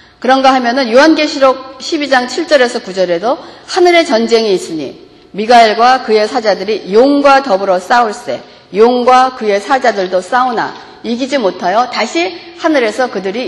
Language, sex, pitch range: Korean, female, 225-315 Hz